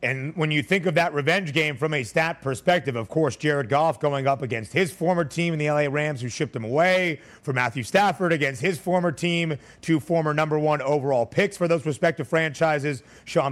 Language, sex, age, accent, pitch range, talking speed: English, male, 30-49, American, 135-170 Hz, 215 wpm